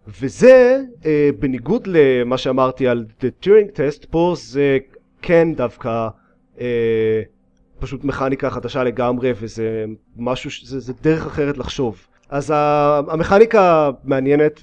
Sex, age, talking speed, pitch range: male, 30-49, 115 wpm, 130-165 Hz